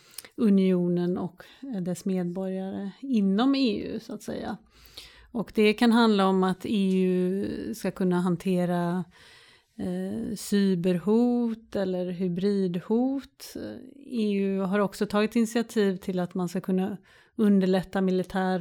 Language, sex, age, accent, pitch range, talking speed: Swedish, female, 30-49, native, 190-225 Hz, 115 wpm